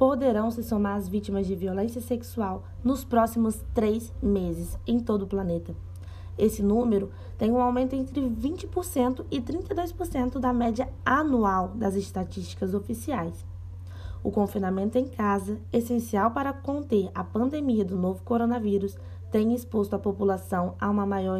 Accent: Brazilian